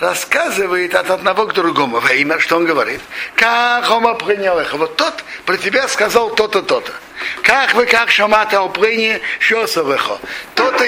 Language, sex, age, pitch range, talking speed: Russian, male, 60-79, 190-255 Hz, 150 wpm